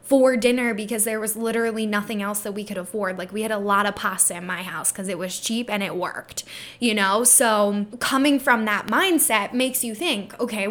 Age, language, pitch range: 10-29, English, 205-245 Hz